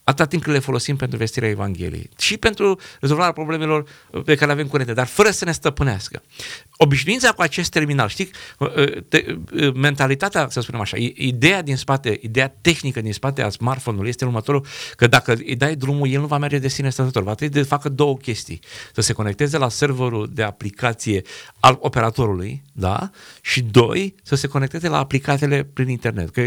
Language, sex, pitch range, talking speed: Romanian, male, 120-150 Hz, 180 wpm